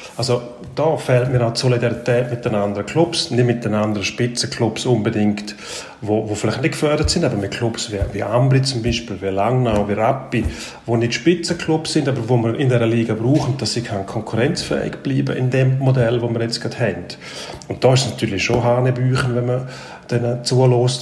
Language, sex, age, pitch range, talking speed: German, male, 40-59, 110-135 Hz, 205 wpm